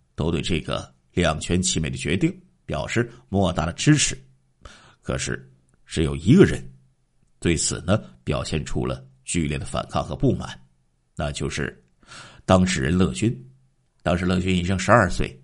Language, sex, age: Chinese, male, 50-69